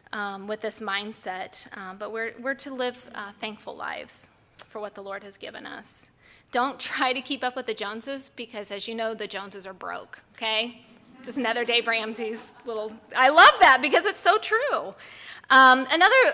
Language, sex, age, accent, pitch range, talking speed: English, female, 20-39, American, 210-250 Hz, 185 wpm